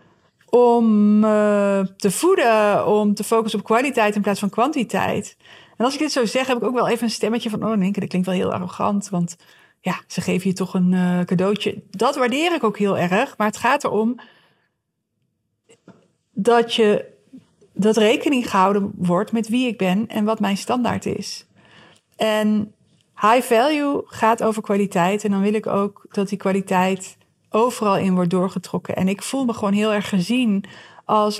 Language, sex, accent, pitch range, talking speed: Dutch, female, Dutch, 195-230 Hz, 180 wpm